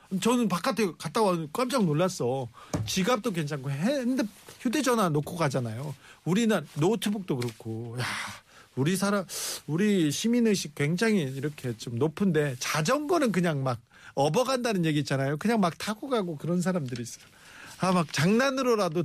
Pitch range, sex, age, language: 135-200 Hz, male, 40-59, Korean